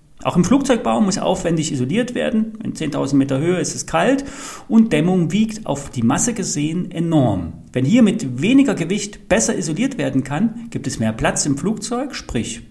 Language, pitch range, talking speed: German, 130-205 Hz, 180 wpm